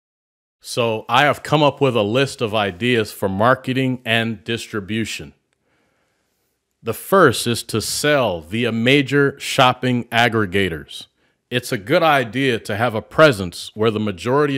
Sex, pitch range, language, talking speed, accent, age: male, 105-135 Hz, English, 140 wpm, American, 40-59